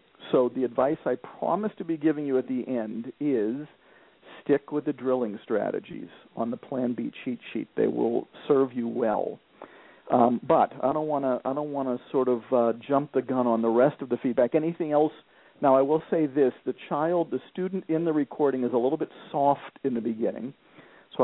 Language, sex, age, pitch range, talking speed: English, male, 50-69, 120-140 Hz, 200 wpm